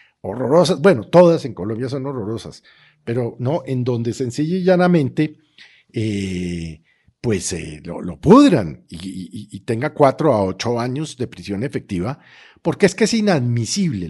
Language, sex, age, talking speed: Spanish, male, 50-69, 145 wpm